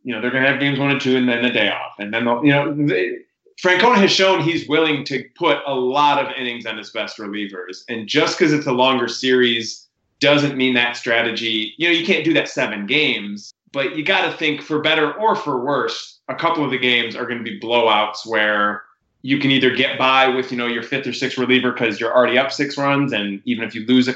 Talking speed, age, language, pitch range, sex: 250 wpm, 20-39, English, 115-145 Hz, male